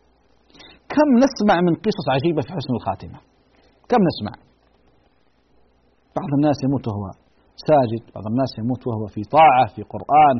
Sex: male